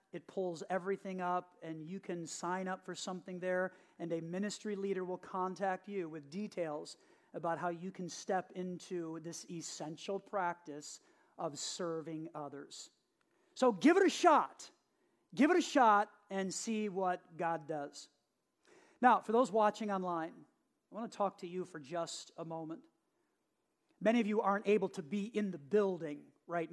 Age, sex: 40-59, male